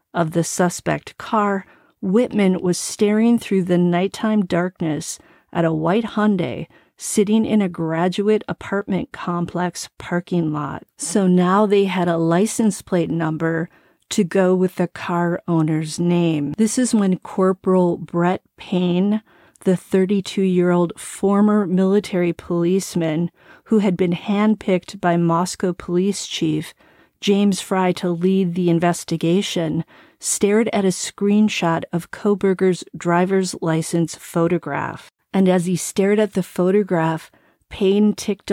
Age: 40-59